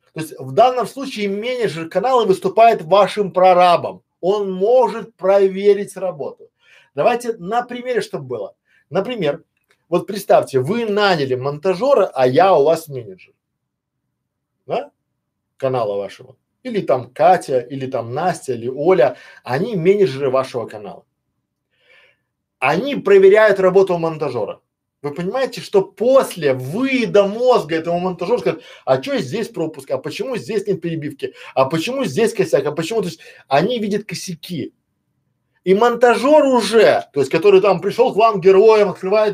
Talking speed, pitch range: 135 wpm, 185-245 Hz